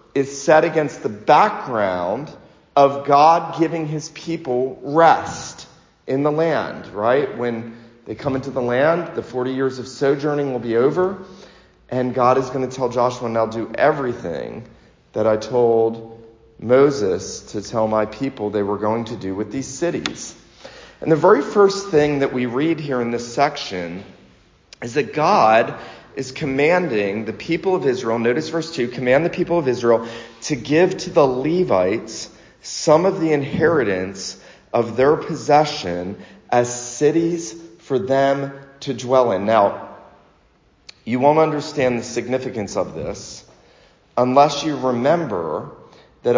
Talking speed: 150 wpm